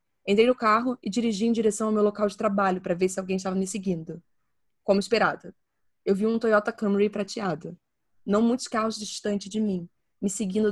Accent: Brazilian